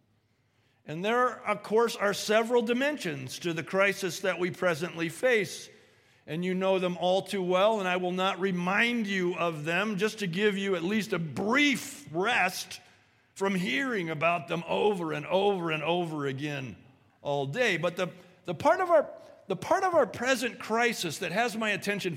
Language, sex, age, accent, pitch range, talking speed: English, male, 50-69, American, 180-245 Hz, 180 wpm